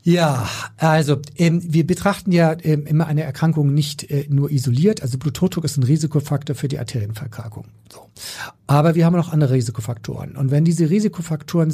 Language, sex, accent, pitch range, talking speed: German, male, German, 135-170 Hz, 170 wpm